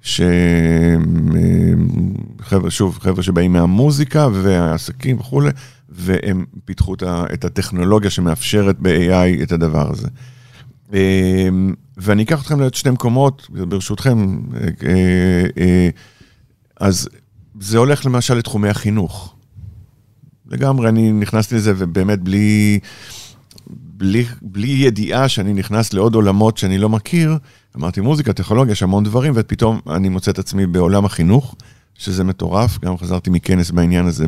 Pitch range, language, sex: 90-120 Hz, Hebrew, male